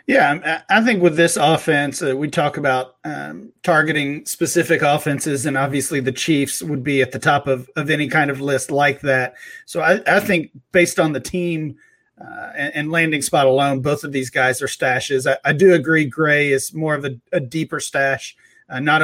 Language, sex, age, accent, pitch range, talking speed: English, male, 40-59, American, 135-165 Hz, 205 wpm